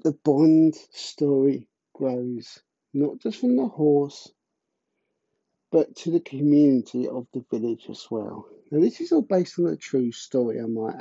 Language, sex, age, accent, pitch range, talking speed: English, male, 50-69, British, 130-175 Hz, 160 wpm